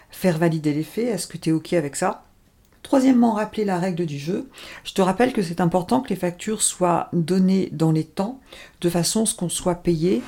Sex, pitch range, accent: female, 165-200 Hz, French